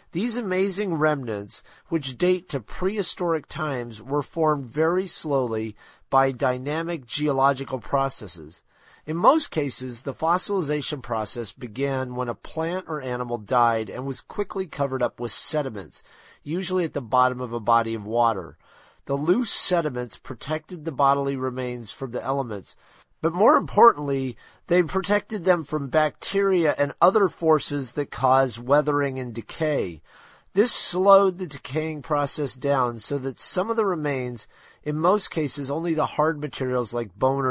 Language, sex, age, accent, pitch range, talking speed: English, male, 40-59, American, 130-165 Hz, 145 wpm